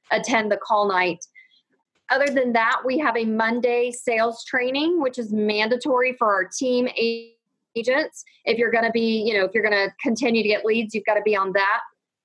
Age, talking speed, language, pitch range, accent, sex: 30-49, 200 wpm, English, 210-240 Hz, American, female